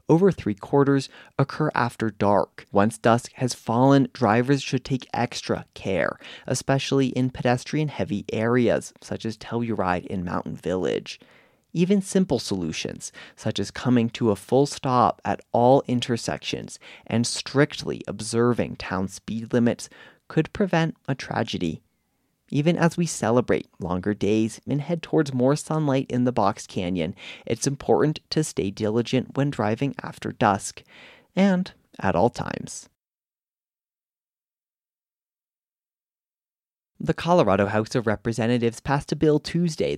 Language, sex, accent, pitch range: English, male, American, 110-145 Hz